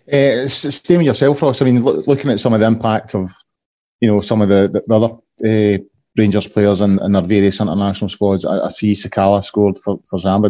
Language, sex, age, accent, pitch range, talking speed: English, male, 30-49, British, 100-115 Hz, 235 wpm